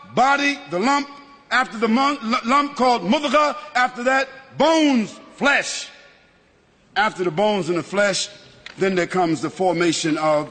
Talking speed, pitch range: 145 wpm, 175-285 Hz